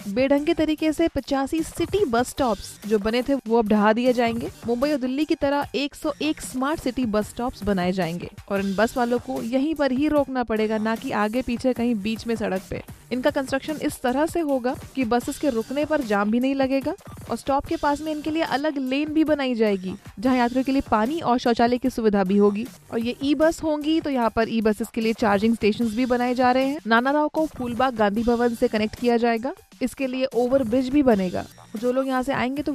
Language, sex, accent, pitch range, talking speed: Hindi, female, native, 225-275 Hz, 230 wpm